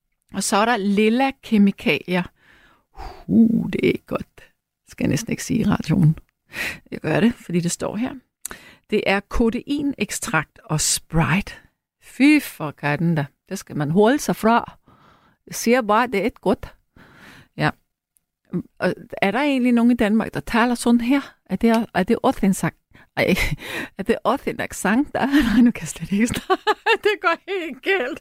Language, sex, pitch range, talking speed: Danish, female, 200-260 Hz, 175 wpm